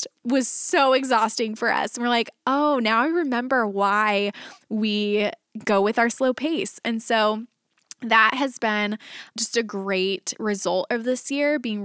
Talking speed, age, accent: 160 wpm, 20-39, American